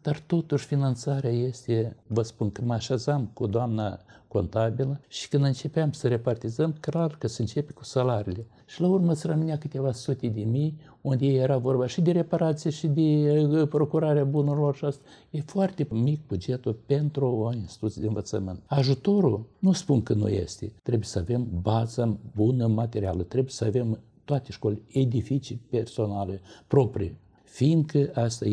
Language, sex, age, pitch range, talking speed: Romanian, male, 60-79, 110-140 Hz, 150 wpm